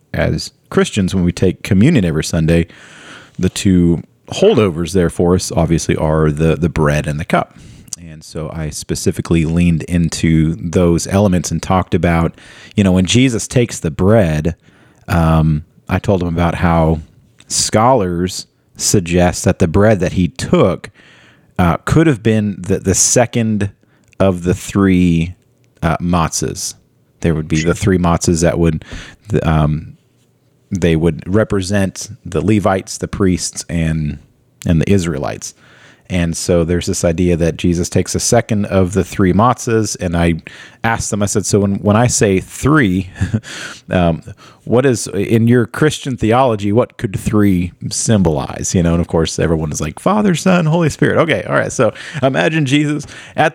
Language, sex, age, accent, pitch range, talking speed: English, male, 30-49, American, 85-110 Hz, 160 wpm